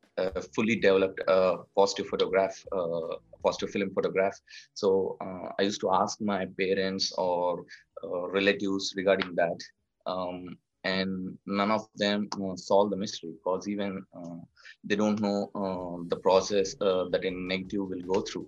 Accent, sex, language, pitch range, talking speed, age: Indian, male, English, 90-105 Hz, 160 wpm, 20-39